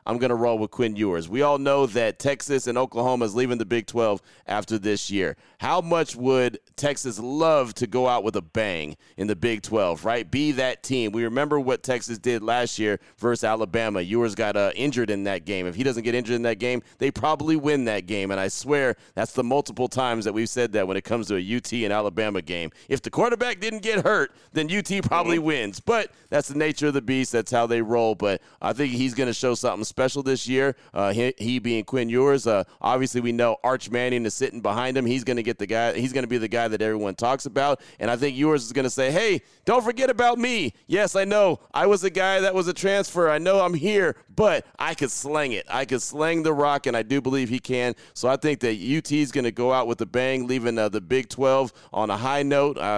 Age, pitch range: 30-49, 110-140 Hz